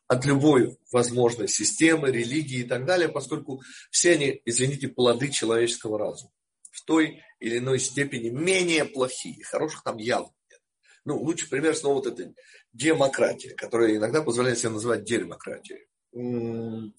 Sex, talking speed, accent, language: male, 140 wpm, native, Russian